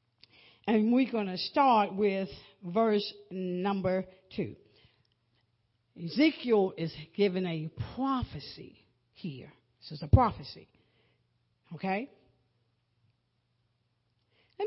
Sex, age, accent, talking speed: female, 60-79, American, 85 wpm